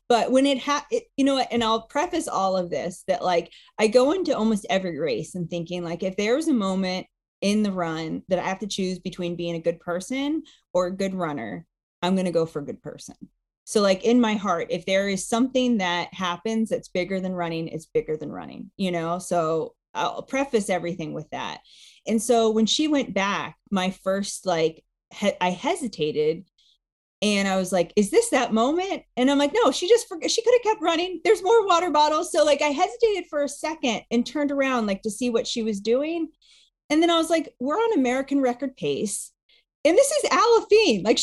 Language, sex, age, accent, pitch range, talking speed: English, female, 30-49, American, 185-290 Hz, 215 wpm